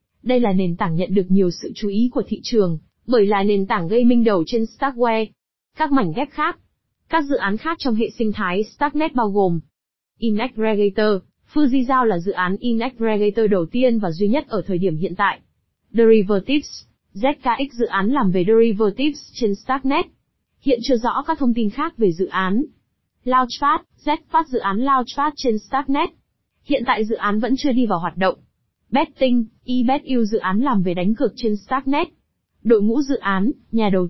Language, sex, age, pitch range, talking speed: Vietnamese, female, 20-39, 205-265 Hz, 185 wpm